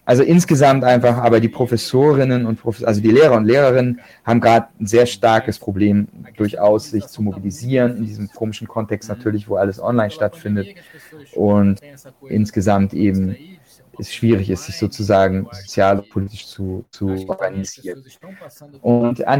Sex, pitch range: male, 105-135 Hz